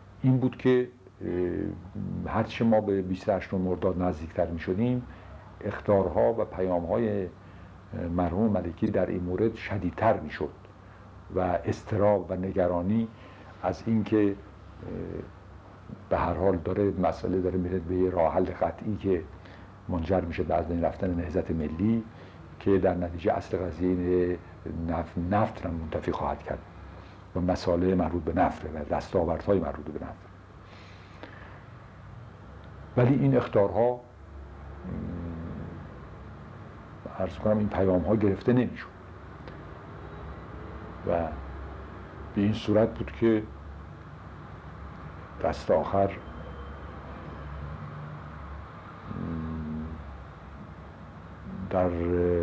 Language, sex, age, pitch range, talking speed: Persian, male, 60-79, 85-100 Hz, 110 wpm